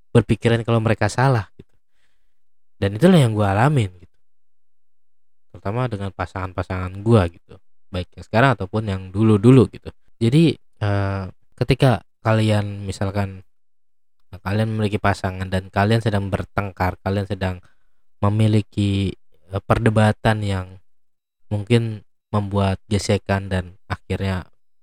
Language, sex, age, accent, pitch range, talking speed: Indonesian, male, 20-39, native, 95-110 Hz, 115 wpm